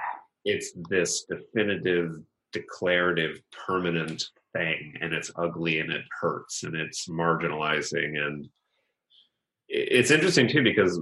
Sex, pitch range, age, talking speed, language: male, 80-95 Hz, 30-49, 110 wpm, English